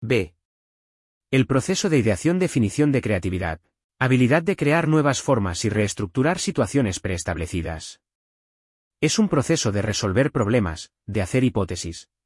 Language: English